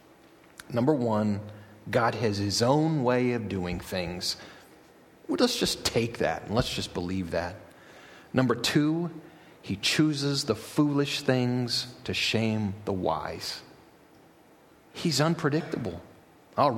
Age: 30-49